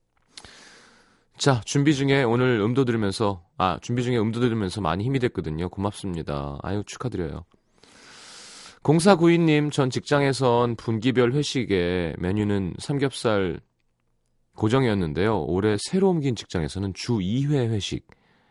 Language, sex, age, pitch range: Korean, male, 30-49, 90-130 Hz